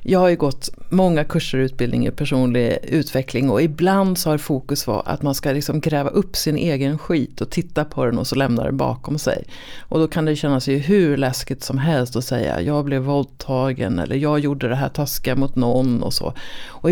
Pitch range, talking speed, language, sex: 135-195 Hz, 215 wpm, Swedish, female